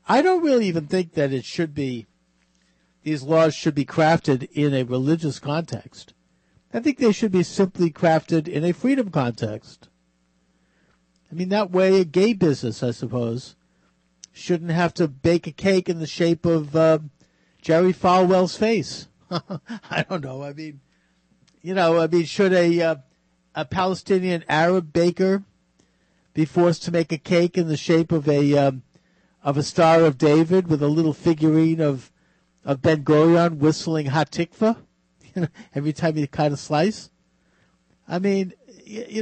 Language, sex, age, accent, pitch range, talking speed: English, male, 50-69, American, 135-175 Hz, 165 wpm